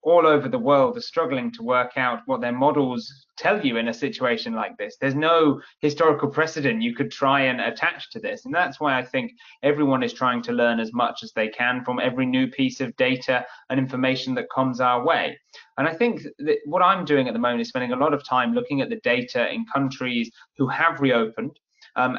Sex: male